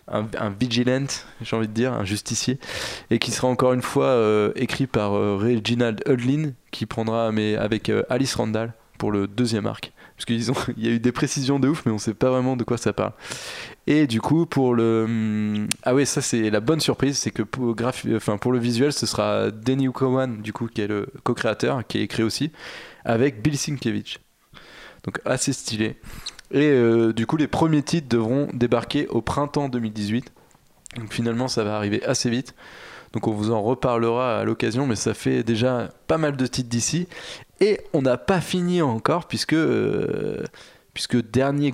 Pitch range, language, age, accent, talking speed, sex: 110-135 Hz, French, 20-39, French, 195 wpm, male